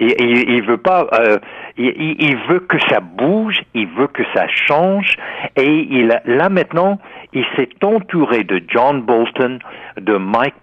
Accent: French